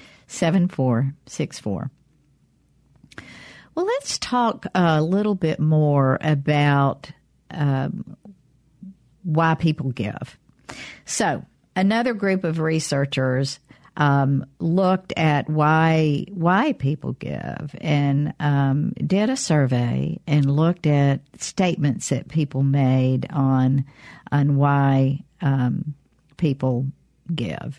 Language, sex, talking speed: English, female, 100 wpm